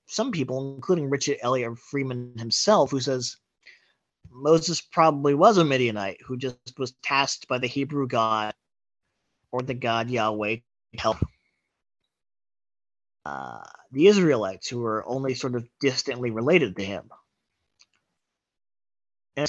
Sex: male